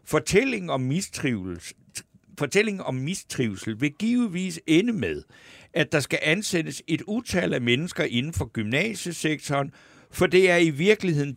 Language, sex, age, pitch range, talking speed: Danish, male, 60-79, 125-175 Hz, 125 wpm